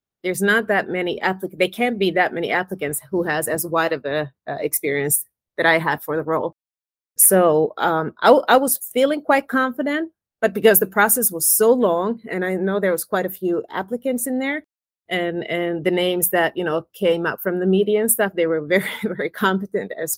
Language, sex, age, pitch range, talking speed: English, female, 30-49, 165-210 Hz, 215 wpm